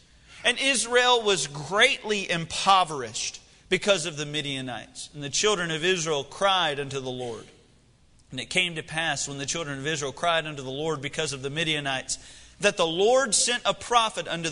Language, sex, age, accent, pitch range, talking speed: English, male, 40-59, American, 145-205 Hz, 180 wpm